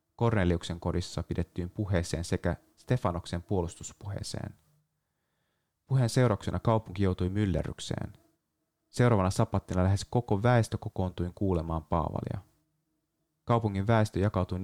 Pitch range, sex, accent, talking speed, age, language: 85-110 Hz, male, native, 95 wpm, 30-49, Finnish